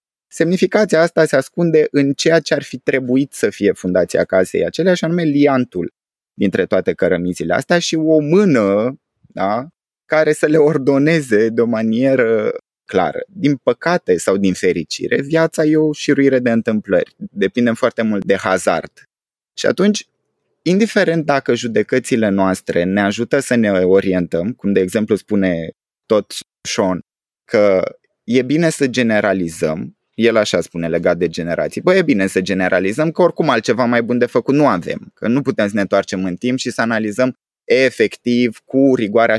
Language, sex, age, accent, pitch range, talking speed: Romanian, male, 20-39, native, 105-155 Hz, 160 wpm